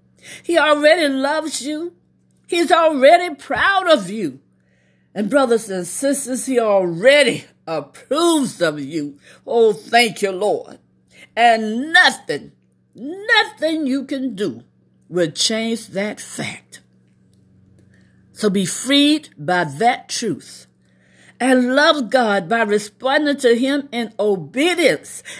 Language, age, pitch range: English, 50-69, 165-280 Hz